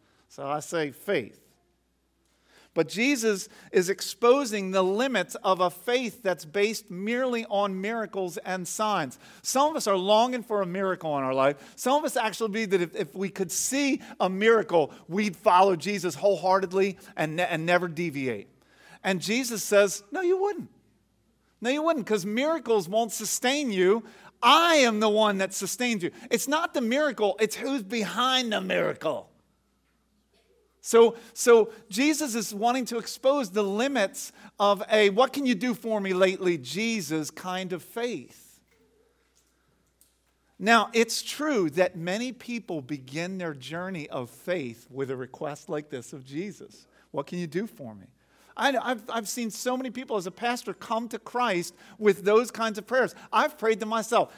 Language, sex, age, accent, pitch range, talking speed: English, male, 50-69, American, 185-240 Hz, 165 wpm